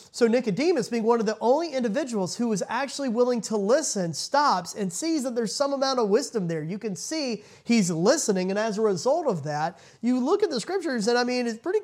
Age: 30-49